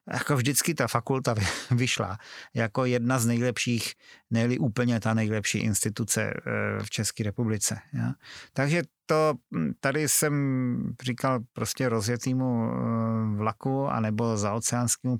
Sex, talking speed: male, 105 wpm